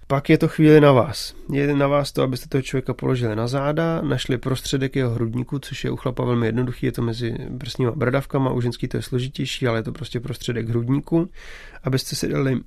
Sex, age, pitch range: male, 30-49, 120-140 Hz